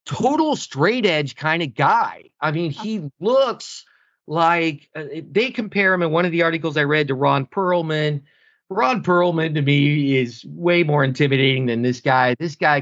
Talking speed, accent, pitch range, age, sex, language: 175 wpm, American, 130-175 Hz, 40-59, male, English